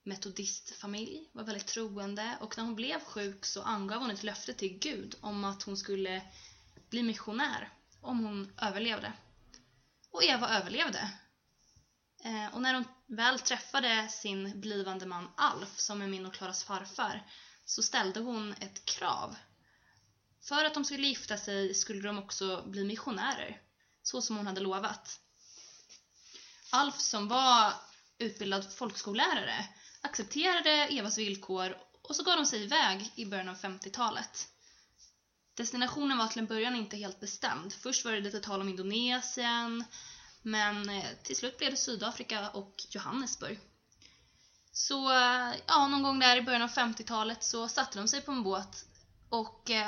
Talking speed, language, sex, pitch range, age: 145 wpm, English, female, 200-250 Hz, 20-39